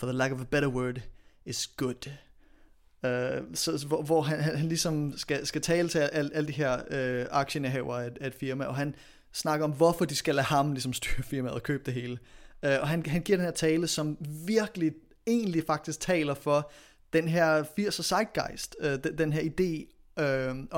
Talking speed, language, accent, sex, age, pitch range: 200 wpm, Danish, native, male, 30-49, 140-165 Hz